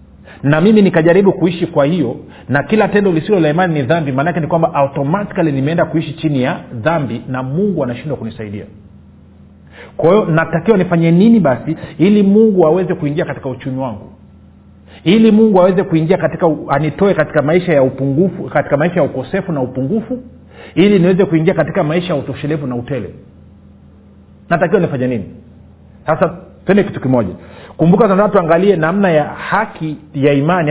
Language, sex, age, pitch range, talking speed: Swahili, male, 40-59, 130-180 Hz, 150 wpm